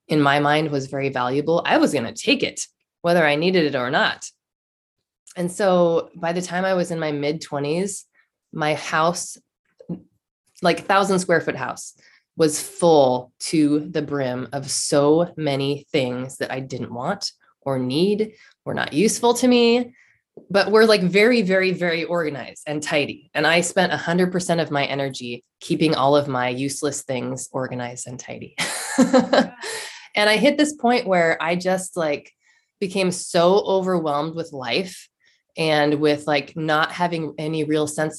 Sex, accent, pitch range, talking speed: female, American, 145-180 Hz, 165 wpm